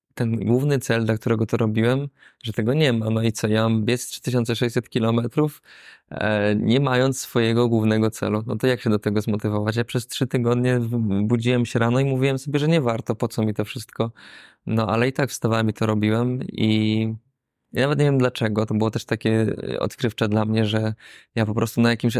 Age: 20-39